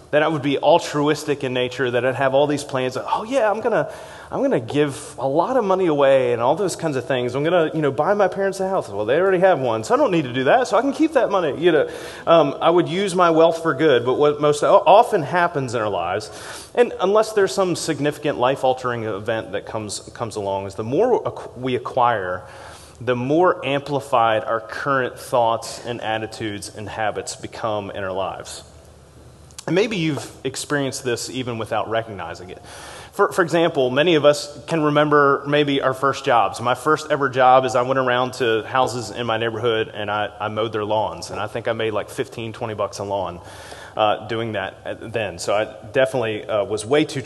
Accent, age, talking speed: American, 30-49, 220 wpm